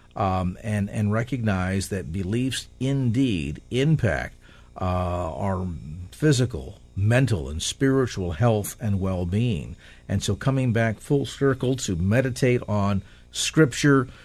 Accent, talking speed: American, 115 wpm